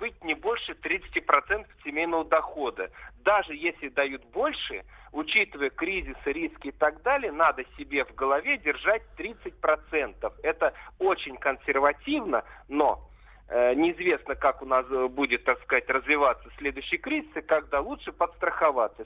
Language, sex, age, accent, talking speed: Russian, male, 50-69, native, 135 wpm